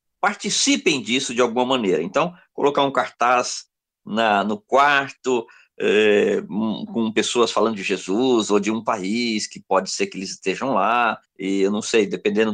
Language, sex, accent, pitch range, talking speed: Portuguese, male, Brazilian, 110-160 Hz, 155 wpm